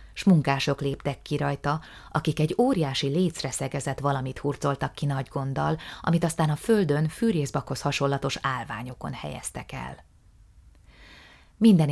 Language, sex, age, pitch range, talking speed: Hungarian, female, 30-49, 135-160 Hz, 120 wpm